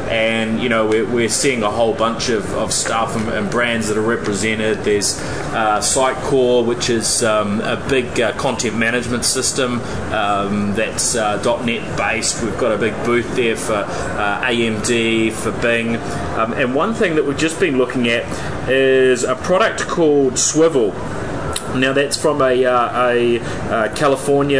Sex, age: male, 20-39